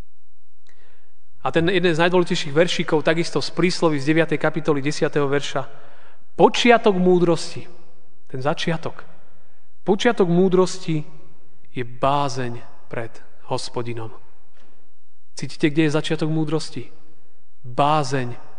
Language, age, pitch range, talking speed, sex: Slovak, 30-49, 125-170 Hz, 95 wpm, male